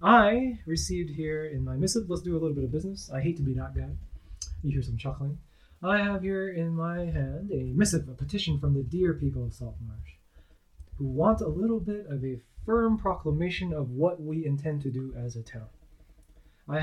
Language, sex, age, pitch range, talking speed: English, male, 20-39, 130-170 Hz, 205 wpm